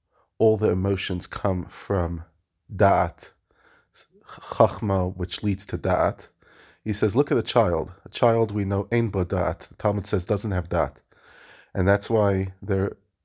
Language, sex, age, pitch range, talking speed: English, male, 30-49, 90-110 Hz, 150 wpm